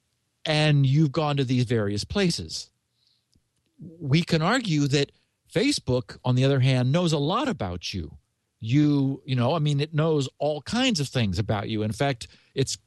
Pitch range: 120-165 Hz